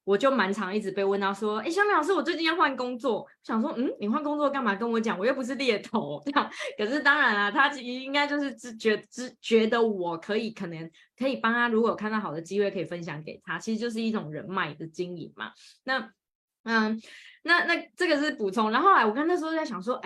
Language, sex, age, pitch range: Chinese, female, 20-39, 195-275 Hz